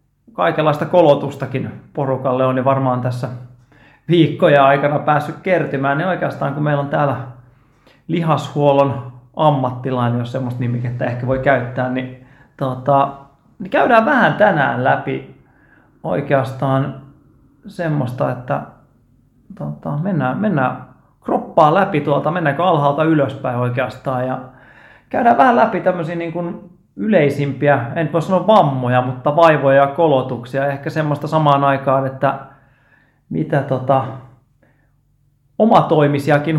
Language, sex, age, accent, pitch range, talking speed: Finnish, male, 30-49, native, 130-150 Hz, 115 wpm